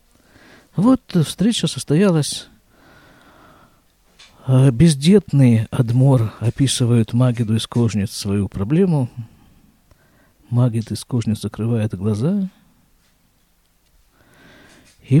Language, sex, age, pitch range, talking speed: Russian, male, 50-69, 110-145 Hz, 65 wpm